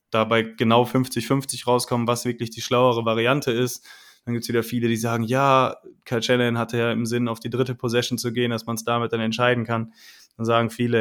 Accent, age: German, 20-39